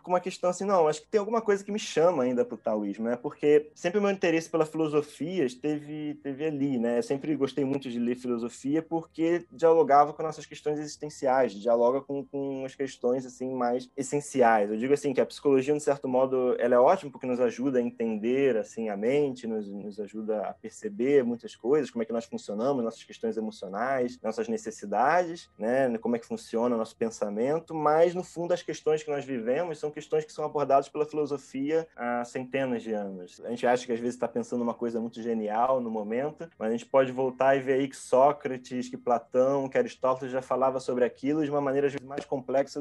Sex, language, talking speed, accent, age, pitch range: male, Portuguese, 210 wpm, Brazilian, 20-39, 125-160 Hz